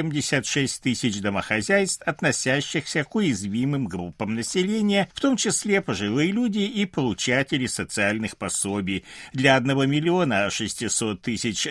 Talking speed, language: 115 wpm, Russian